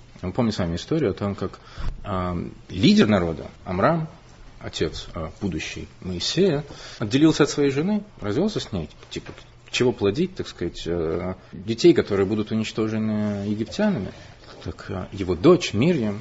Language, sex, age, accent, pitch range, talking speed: Russian, male, 30-49, native, 95-150 Hz, 145 wpm